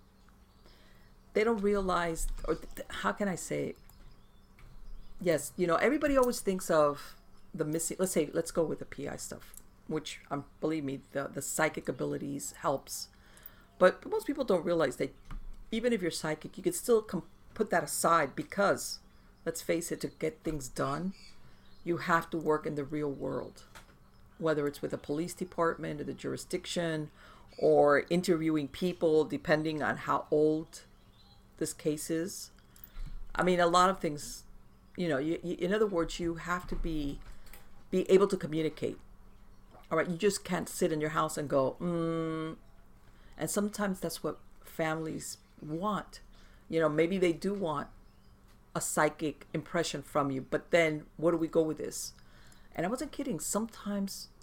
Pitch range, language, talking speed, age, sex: 150-180 Hz, English, 165 wpm, 50-69, female